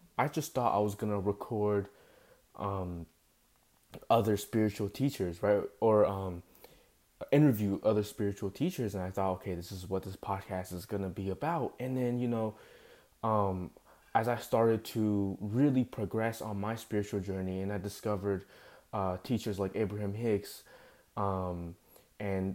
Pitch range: 95-115 Hz